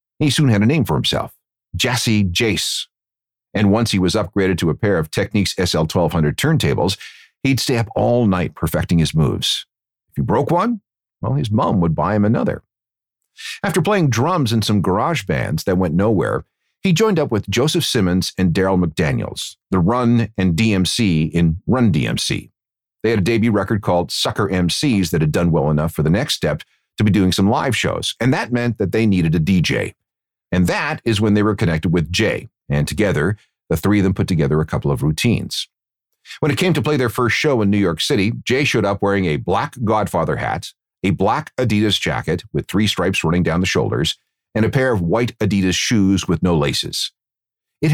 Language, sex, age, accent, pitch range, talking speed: English, male, 50-69, American, 90-120 Hz, 200 wpm